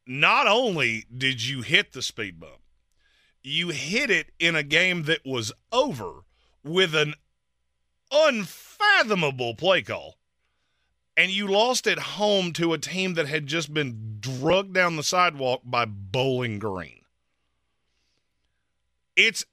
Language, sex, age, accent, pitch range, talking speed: English, male, 40-59, American, 110-165 Hz, 130 wpm